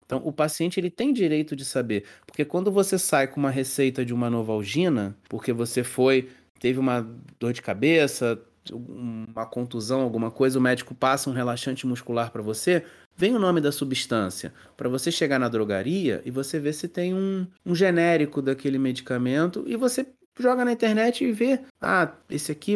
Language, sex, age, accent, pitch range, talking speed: Portuguese, male, 30-49, Brazilian, 120-170 Hz, 180 wpm